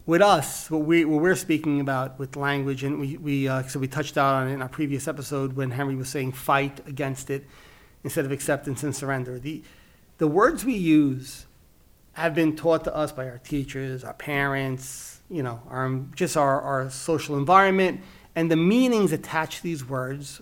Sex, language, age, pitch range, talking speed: male, English, 30-49, 135-165 Hz, 190 wpm